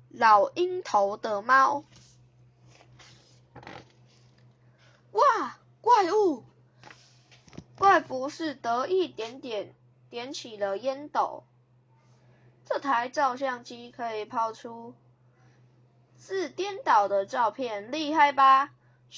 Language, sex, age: Chinese, female, 20-39